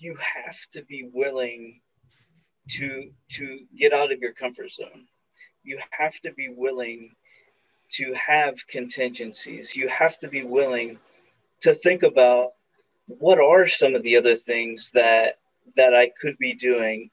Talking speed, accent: 145 wpm, American